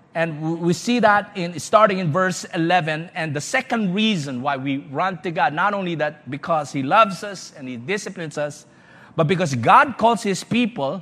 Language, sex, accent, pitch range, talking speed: English, male, Filipino, 155-210 Hz, 185 wpm